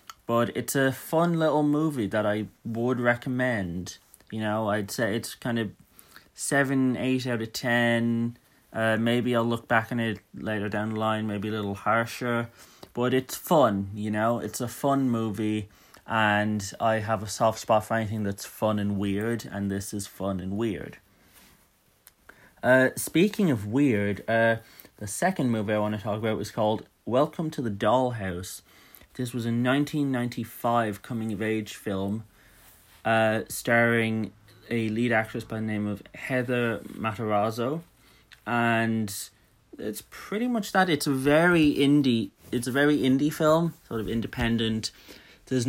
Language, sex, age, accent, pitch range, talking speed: English, male, 30-49, British, 105-125 Hz, 160 wpm